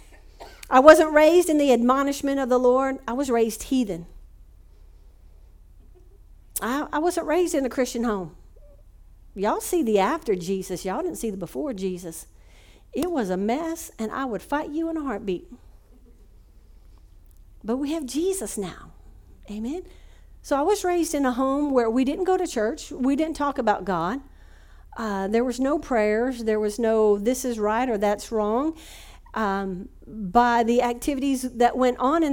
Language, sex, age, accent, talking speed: English, female, 50-69, American, 165 wpm